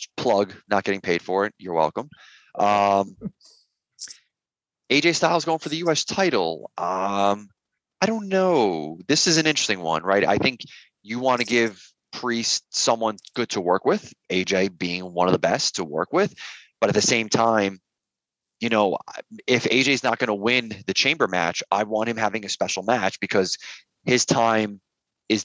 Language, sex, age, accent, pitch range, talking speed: English, male, 30-49, American, 95-115 Hz, 175 wpm